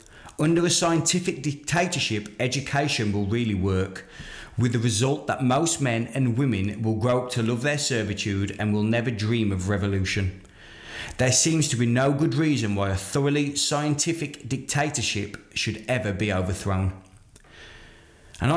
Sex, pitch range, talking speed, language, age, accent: male, 110-140 Hz, 150 wpm, English, 30-49, British